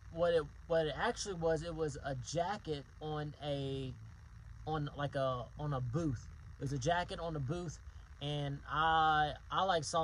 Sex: male